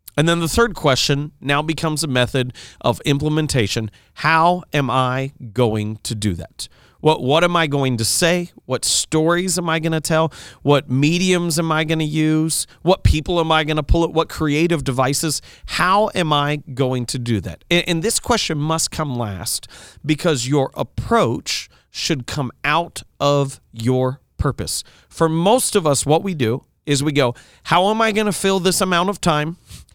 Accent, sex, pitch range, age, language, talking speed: American, male, 130-170 Hz, 40-59, English, 185 wpm